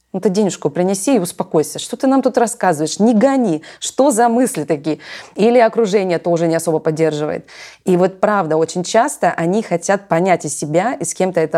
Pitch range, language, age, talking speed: 165-195 Hz, Russian, 20-39, 185 wpm